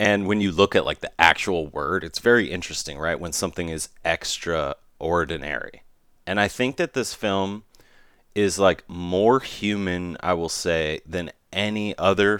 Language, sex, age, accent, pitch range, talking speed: English, male, 30-49, American, 85-105 Hz, 160 wpm